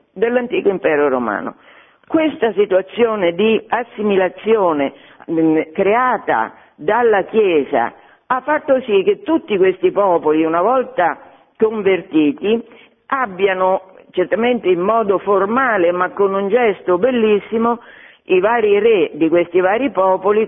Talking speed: 110 wpm